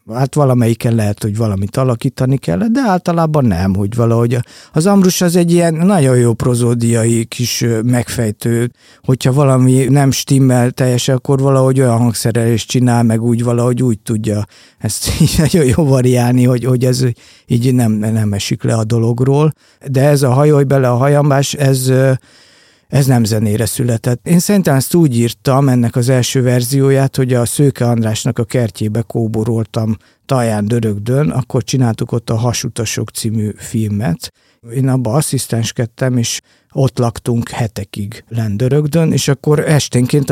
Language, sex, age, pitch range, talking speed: Hungarian, male, 50-69, 115-135 Hz, 145 wpm